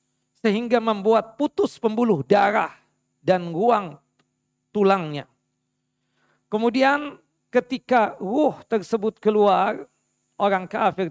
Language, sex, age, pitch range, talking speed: Indonesian, male, 50-69, 175-235 Hz, 80 wpm